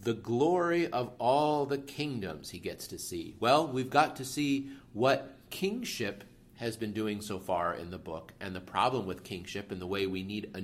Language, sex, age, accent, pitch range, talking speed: English, male, 40-59, American, 110-135 Hz, 205 wpm